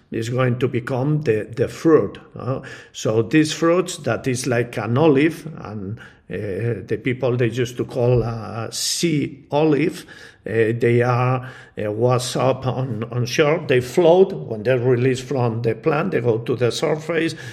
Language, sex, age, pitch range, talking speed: English, male, 50-69, 115-145 Hz, 170 wpm